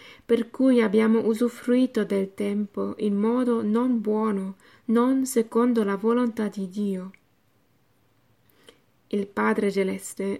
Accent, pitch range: native, 195-230 Hz